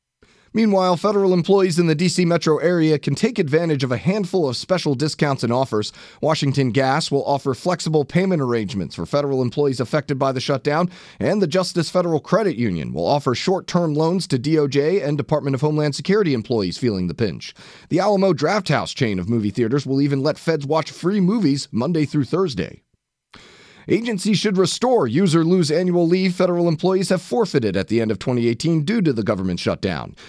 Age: 30-49